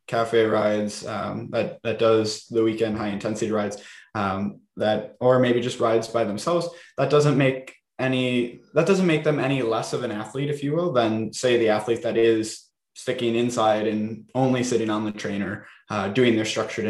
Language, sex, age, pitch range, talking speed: English, male, 10-29, 105-125 Hz, 190 wpm